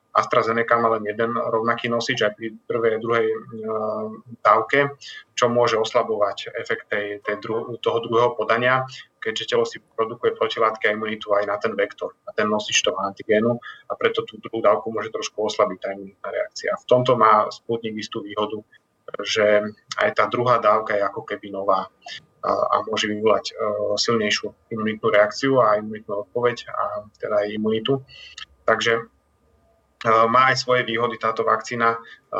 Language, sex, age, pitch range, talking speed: Czech, male, 30-49, 105-115 Hz, 150 wpm